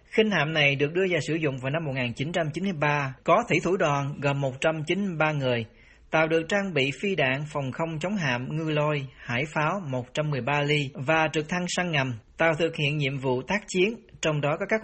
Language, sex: Vietnamese, male